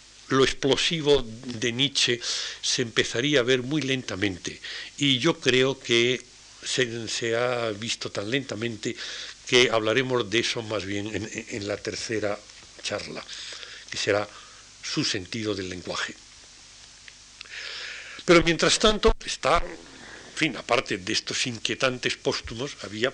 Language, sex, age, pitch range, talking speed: Spanish, male, 60-79, 110-140 Hz, 125 wpm